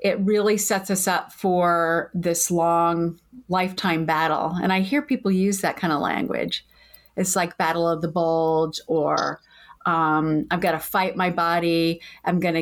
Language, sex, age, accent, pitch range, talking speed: English, female, 30-49, American, 170-200 Hz, 165 wpm